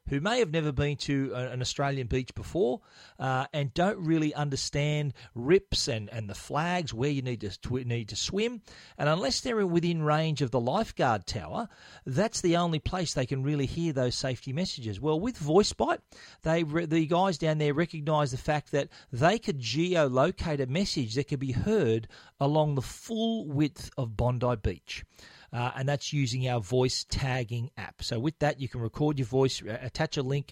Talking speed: 190 wpm